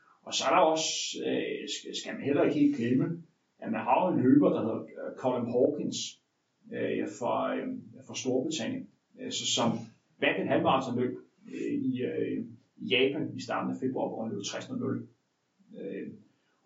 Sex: male